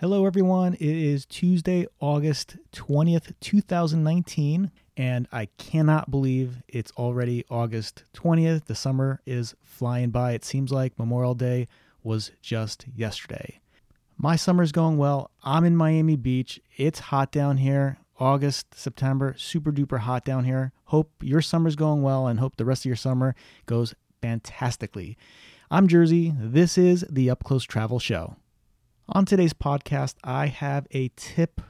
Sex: male